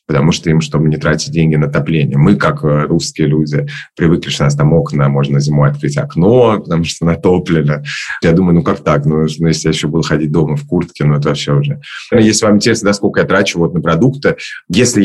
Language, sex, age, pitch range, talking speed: Russian, male, 30-49, 80-125 Hz, 215 wpm